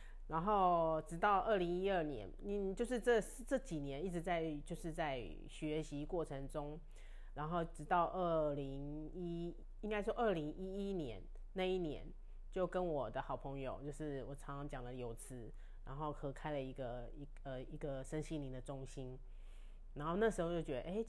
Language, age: Chinese, 30-49